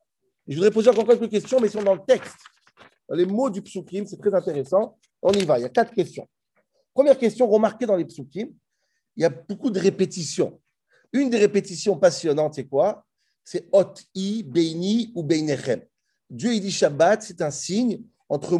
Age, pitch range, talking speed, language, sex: 40-59, 170-225 Hz, 205 wpm, French, male